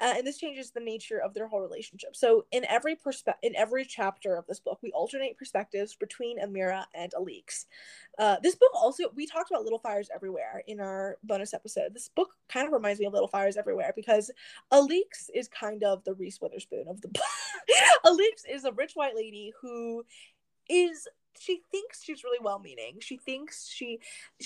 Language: English